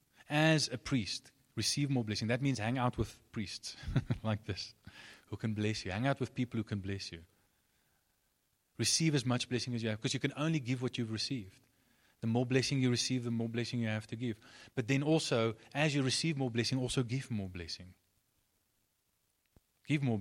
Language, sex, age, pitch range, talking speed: English, male, 30-49, 105-135 Hz, 200 wpm